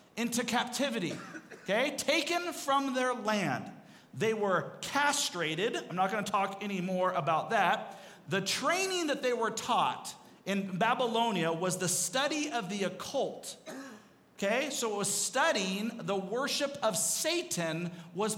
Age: 40-59